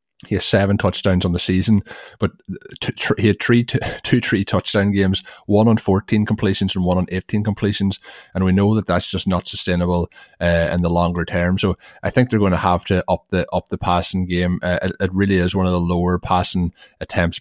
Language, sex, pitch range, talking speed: English, male, 90-100 Hz, 215 wpm